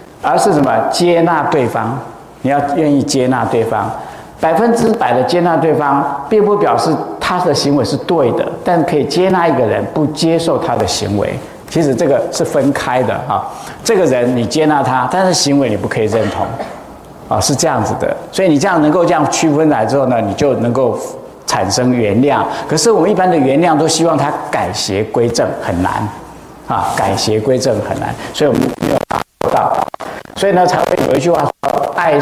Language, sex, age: Chinese, male, 50-69